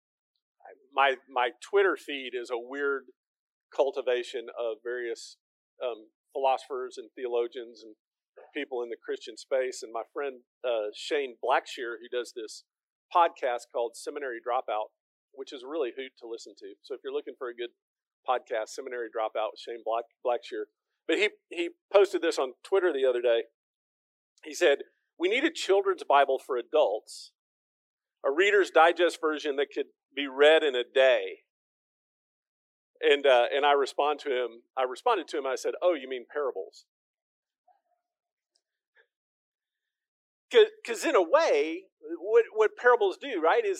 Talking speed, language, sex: 150 wpm, English, male